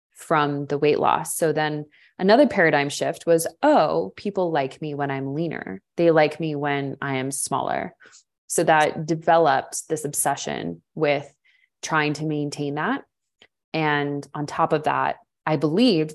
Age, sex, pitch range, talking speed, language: 20-39, female, 140-165 Hz, 150 wpm, English